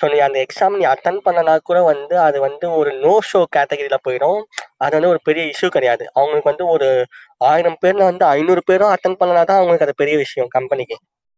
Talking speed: 200 wpm